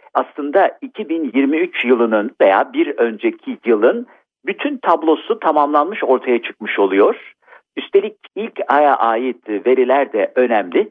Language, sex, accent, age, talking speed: Turkish, male, native, 50-69, 110 wpm